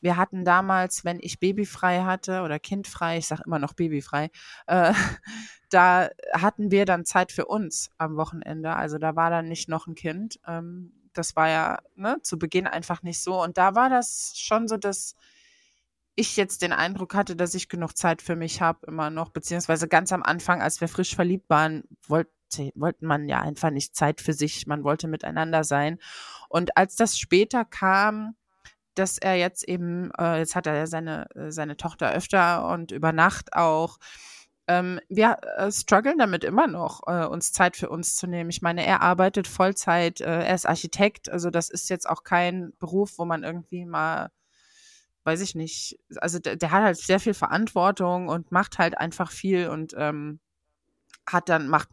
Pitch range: 160-190 Hz